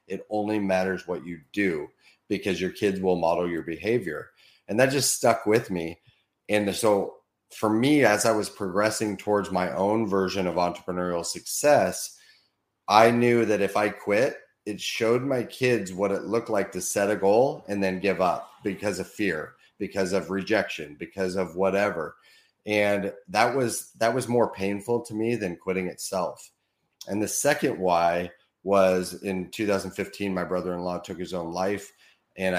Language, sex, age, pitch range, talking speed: English, male, 30-49, 90-105 Hz, 170 wpm